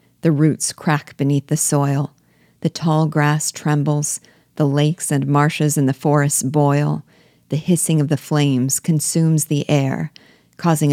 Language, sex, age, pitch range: English, female, 50-69, 135-155 Hz